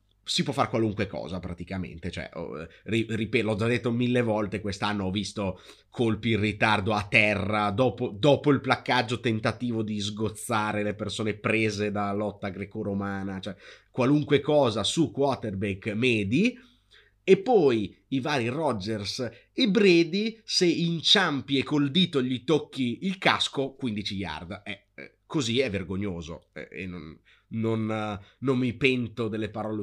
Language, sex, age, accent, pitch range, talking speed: Italian, male, 30-49, native, 105-140 Hz, 145 wpm